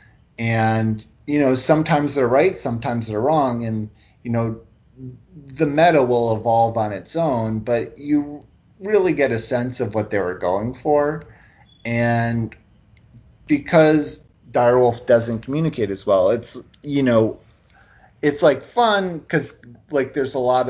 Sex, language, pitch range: male, English, 115-150 Hz